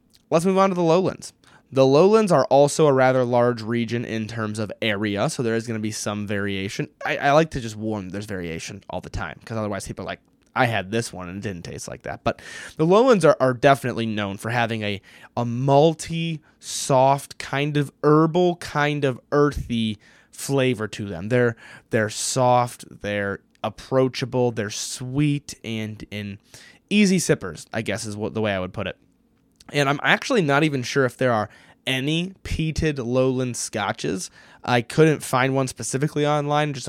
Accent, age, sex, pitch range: American, 20-39, male, 110-135 Hz